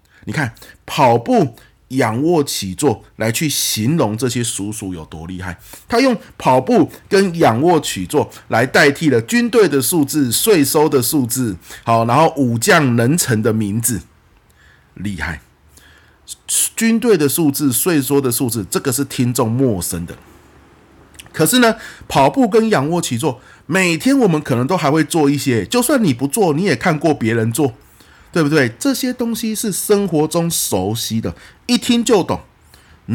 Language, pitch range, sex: Chinese, 95-155 Hz, male